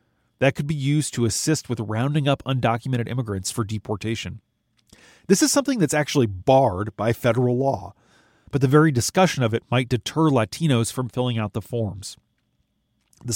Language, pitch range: English, 115-150 Hz